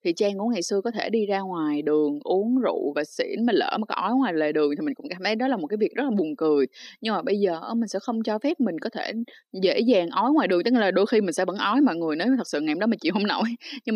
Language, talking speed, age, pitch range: Vietnamese, 320 wpm, 20-39, 190-275 Hz